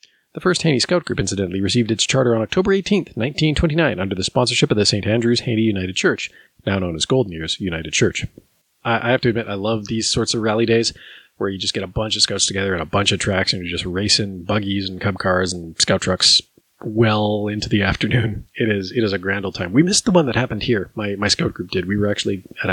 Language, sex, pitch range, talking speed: English, male, 100-140 Hz, 250 wpm